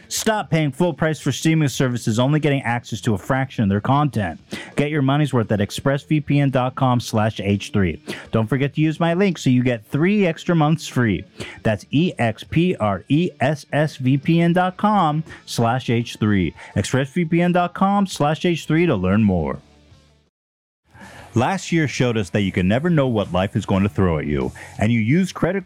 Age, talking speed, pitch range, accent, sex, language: 30-49, 170 wpm, 105-155 Hz, American, male, English